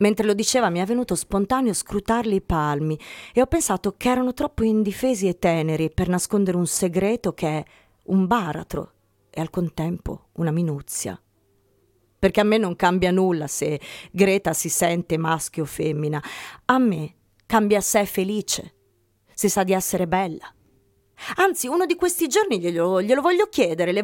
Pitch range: 160-220 Hz